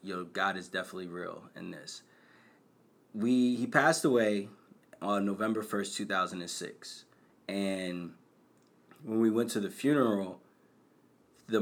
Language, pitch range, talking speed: English, 95-115 Hz, 120 wpm